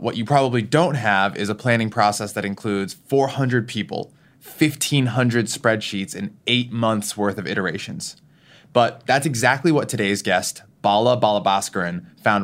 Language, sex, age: English, male, 20-39